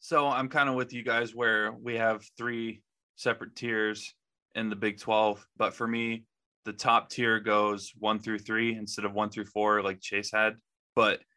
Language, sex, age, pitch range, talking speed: English, male, 20-39, 105-115 Hz, 190 wpm